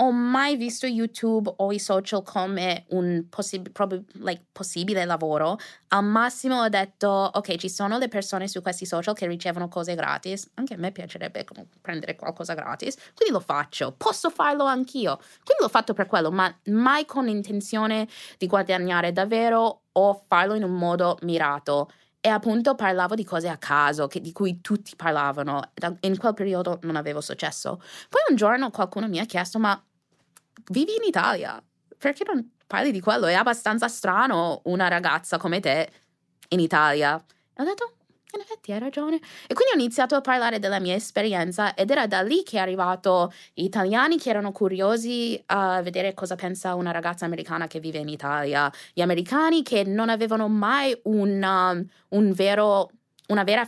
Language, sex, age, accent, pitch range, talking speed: Italian, female, 20-39, native, 175-225 Hz, 175 wpm